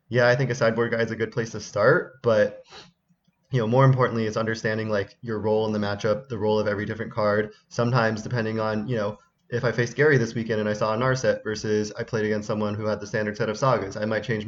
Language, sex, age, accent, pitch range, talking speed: English, male, 20-39, American, 105-120 Hz, 255 wpm